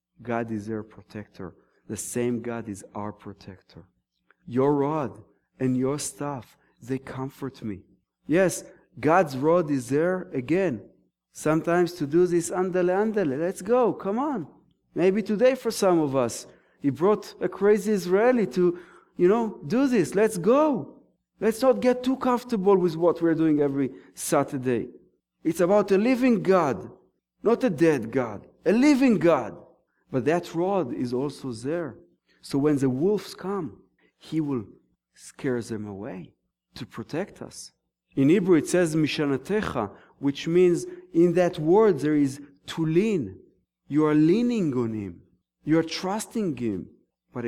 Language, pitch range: English, 120-185 Hz